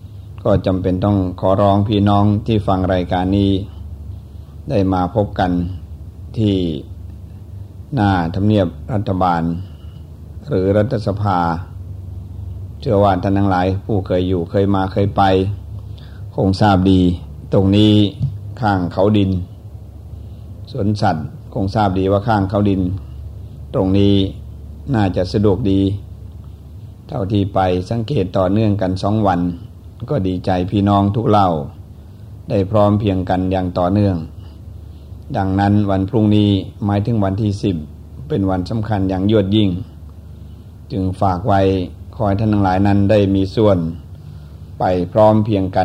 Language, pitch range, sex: Thai, 90-100 Hz, male